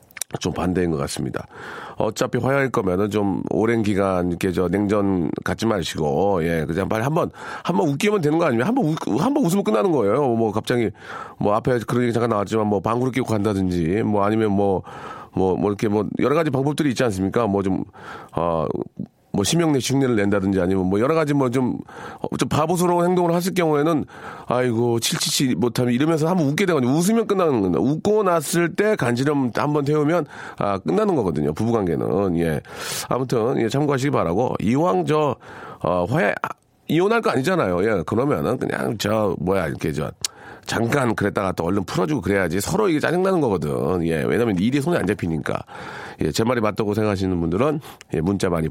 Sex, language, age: male, Korean, 40-59